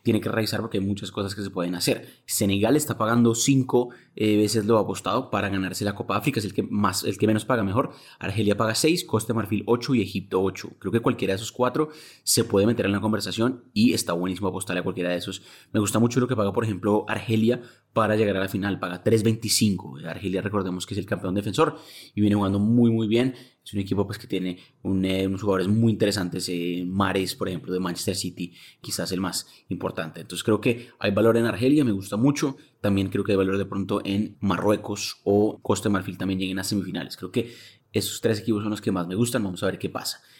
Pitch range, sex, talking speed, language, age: 95-120 Hz, male, 235 wpm, Spanish, 20-39